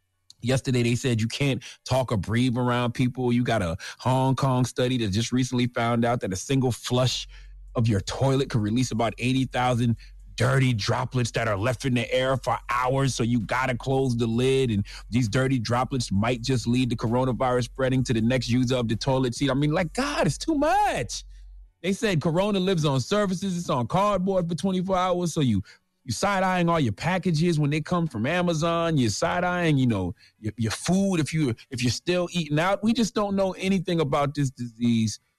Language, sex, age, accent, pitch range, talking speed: English, male, 30-49, American, 110-140 Hz, 200 wpm